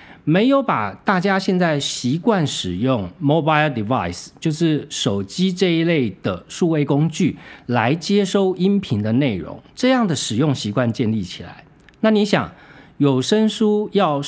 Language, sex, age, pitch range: Chinese, male, 50-69, 120-180 Hz